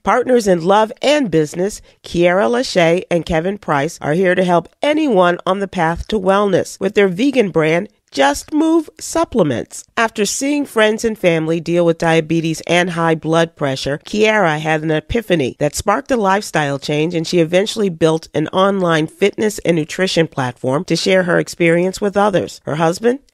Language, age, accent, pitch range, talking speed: English, 40-59, American, 165-220 Hz, 170 wpm